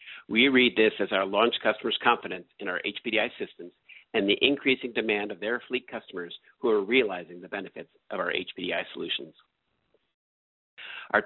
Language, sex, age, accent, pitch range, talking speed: English, male, 50-69, American, 100-130 Hz, 160 wpm